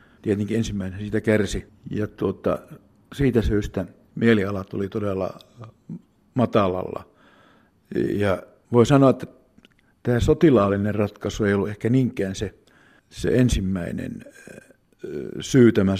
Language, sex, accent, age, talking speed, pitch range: Finnish, male, native, 60-79, 105 wpm, 100-120 Hz